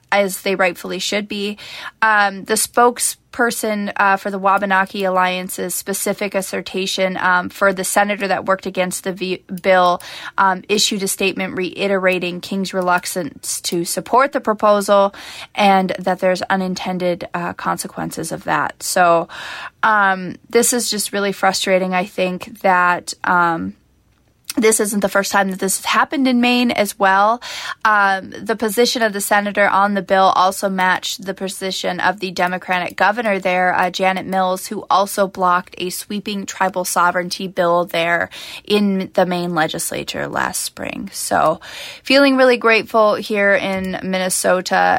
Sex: female